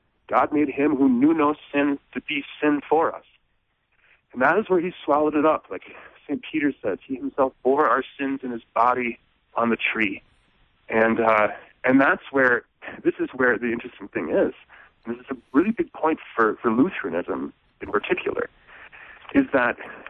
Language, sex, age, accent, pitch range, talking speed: English, male, 40-59, American, 120-170 Hz, 180 wpm